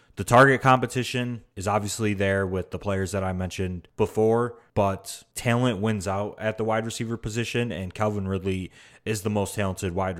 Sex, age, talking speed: male, 20-39, 175 wpm